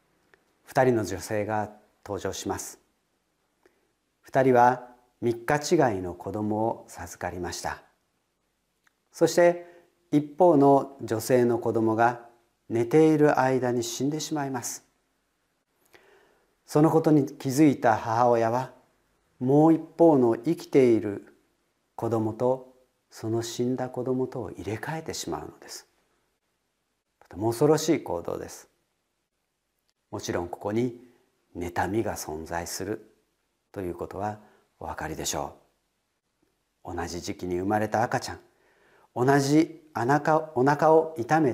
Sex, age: male, 40-59